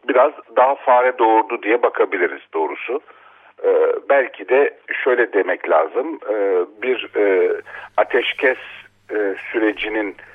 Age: 50-69